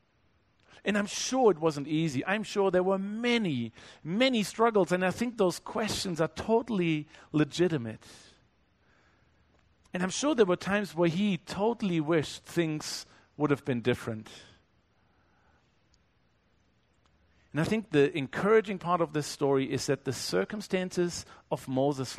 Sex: male